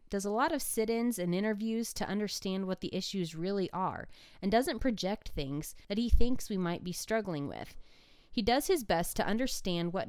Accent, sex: American, female